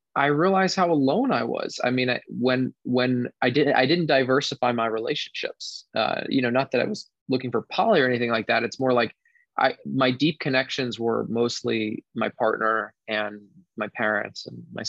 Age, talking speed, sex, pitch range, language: 20-39, 195 wpm, male, 110-135 Hz, English